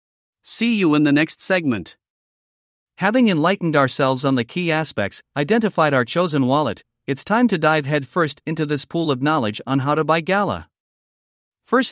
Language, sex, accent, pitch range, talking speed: English, male, American, 135-180 Hz, 165 wpm